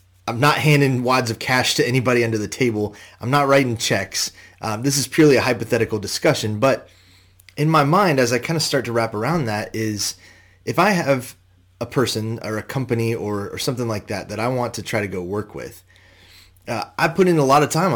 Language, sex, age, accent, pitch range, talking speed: English, male, 30-49, American, 95-125 Hz, 220 wpm